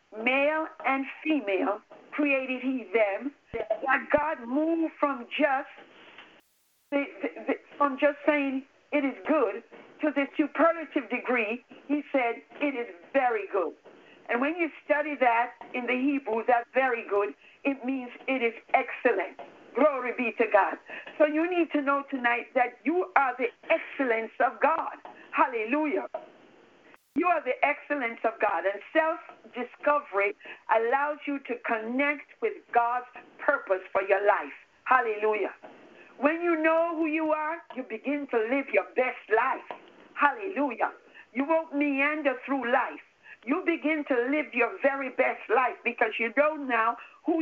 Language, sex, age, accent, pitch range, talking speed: English, female, 50-69, American, 240-305 Hz, 145 wpm